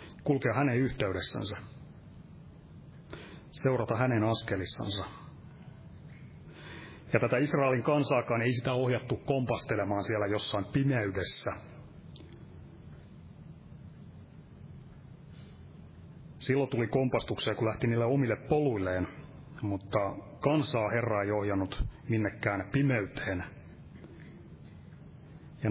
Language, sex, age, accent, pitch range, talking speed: Finnish, male, 30-49, native, 110-140 Hz, 75 wpm